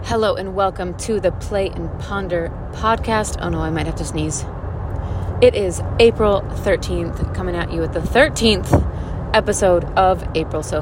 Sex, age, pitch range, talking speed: female, 30-49, 85-125 Hz, 165 wpm